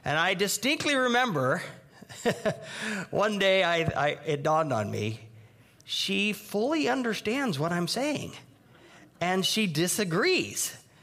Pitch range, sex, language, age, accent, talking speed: 130-215 Hz, male, English, 50-69, American, 115 wpm